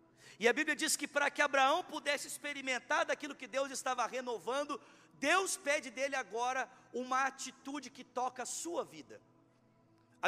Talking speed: 160 wpm